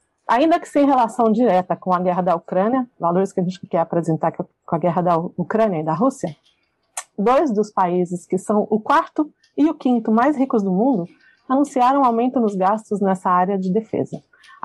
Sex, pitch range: female, 190-250 Hz